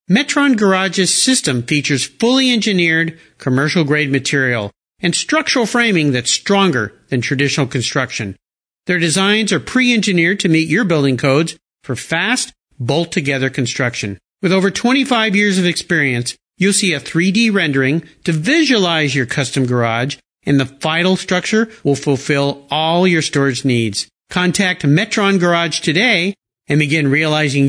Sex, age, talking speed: male, 50-69, 135 wpm